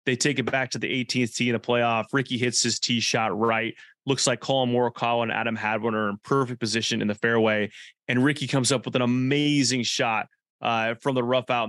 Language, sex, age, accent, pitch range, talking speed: English, male, 20-39, American, 115-140 Hz, 230 wpm